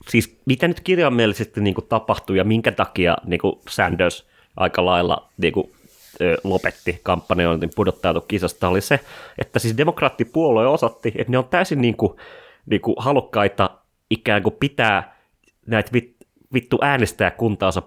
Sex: male